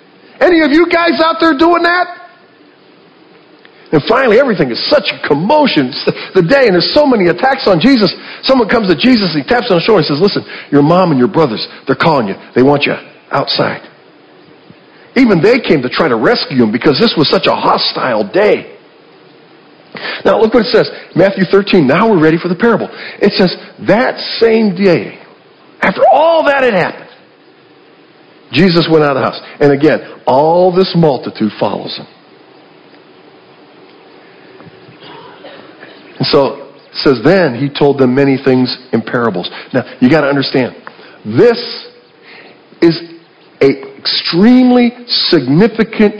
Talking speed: 160 wpm